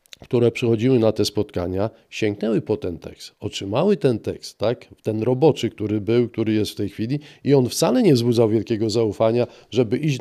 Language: Polish